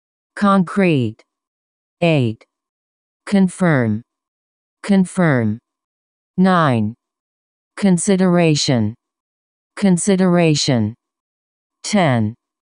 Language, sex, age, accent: Chinese, female, 40-59, American